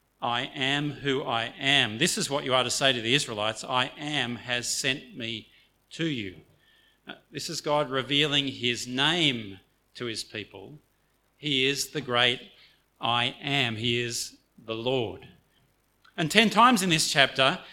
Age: 40-59